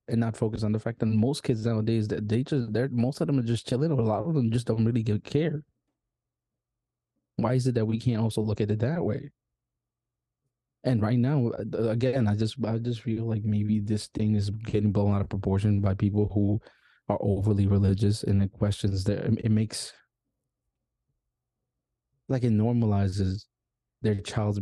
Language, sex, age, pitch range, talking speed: English, male, 20-39, 105-120 Hz, 190 wpm